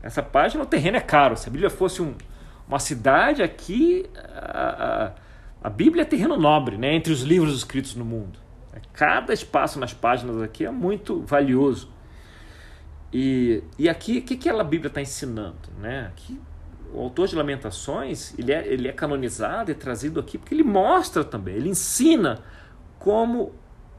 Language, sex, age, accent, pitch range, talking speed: Portuguese, male, 40-59, Brazilian, 105-160 Hz, 170 wpm